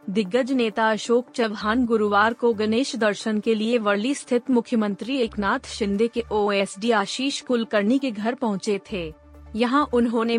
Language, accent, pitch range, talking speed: Hindi, native, 210-250 Hz, 145 wpm